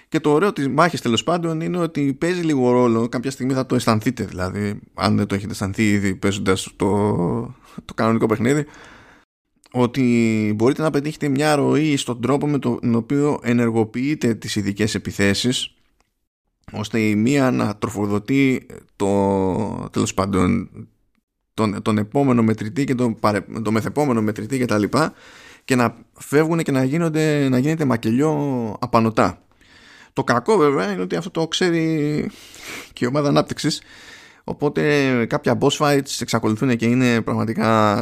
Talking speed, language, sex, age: 140 wpm, Greek, male, 20-39